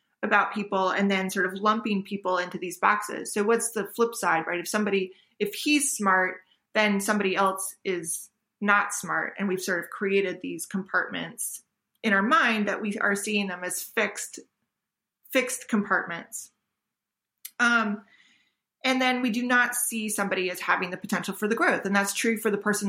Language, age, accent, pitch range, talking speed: English, 20-39, American, 185-215 Hz, 180 wpm